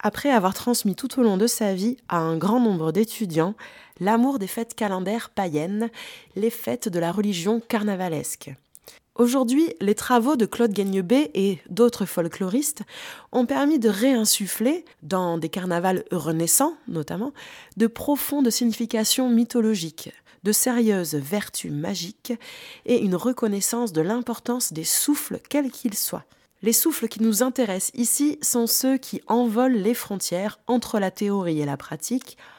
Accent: French